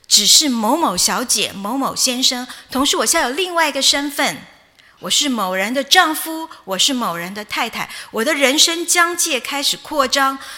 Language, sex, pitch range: Chinese, female, 220-300 Hz